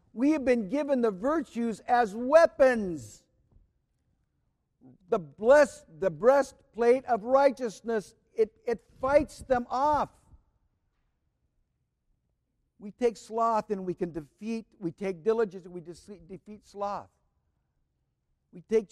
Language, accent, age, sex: English, American, 60-79, male